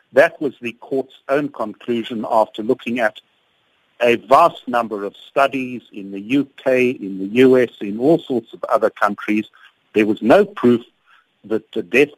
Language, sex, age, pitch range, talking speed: English, male, 60-79, 110-135 Hz, 165 wpm